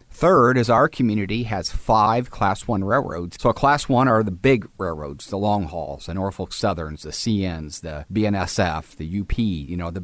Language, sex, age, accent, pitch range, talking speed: English, male, 40-59, American, 95-120 Hz, 190 wpm